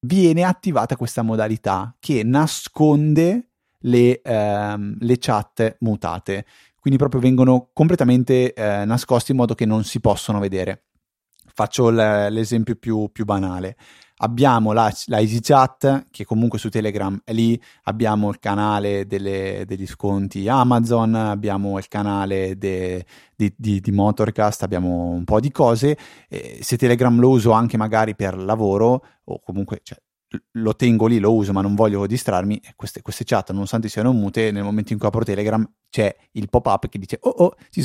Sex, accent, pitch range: male, native, 105-125 Hz